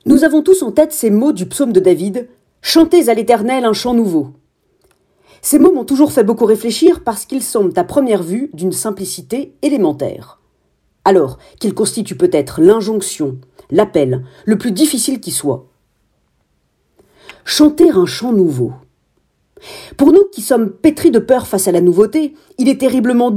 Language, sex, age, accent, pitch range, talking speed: French, female, 40-59, French, 195-300 Hz, 160 wpm